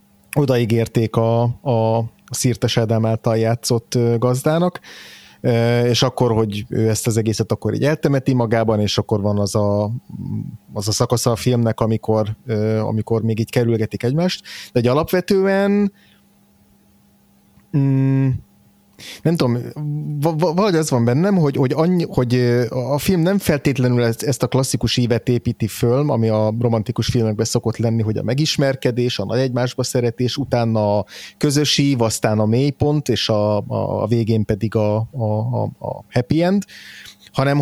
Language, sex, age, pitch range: Hungarian, male, 30-49, 110-140 Hz